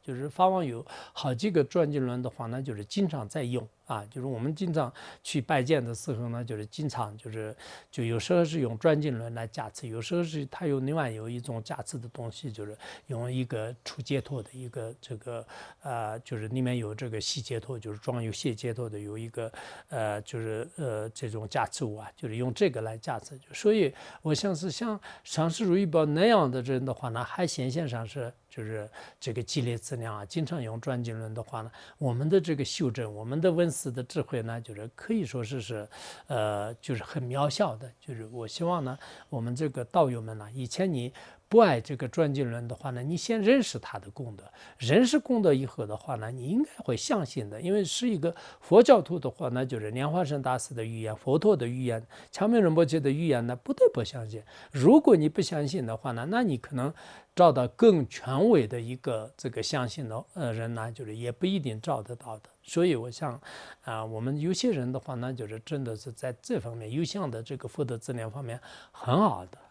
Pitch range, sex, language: 115-155 Hz, male, English